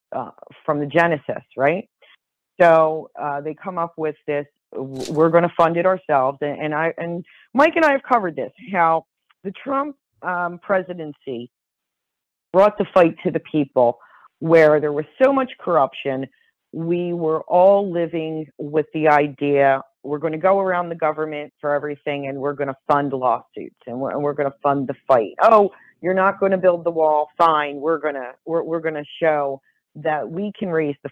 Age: 40-59